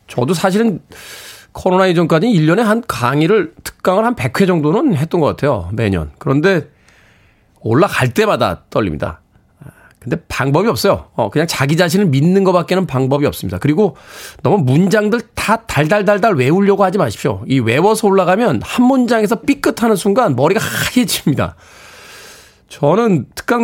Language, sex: Korean, male